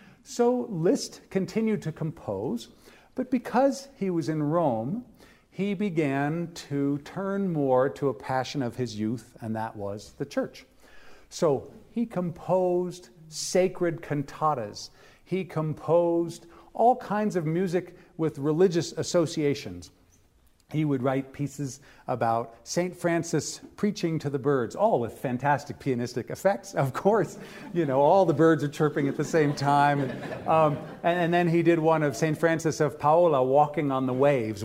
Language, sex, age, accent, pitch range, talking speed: English, male, 50-69, American, 135-180 Hz, 150 wpm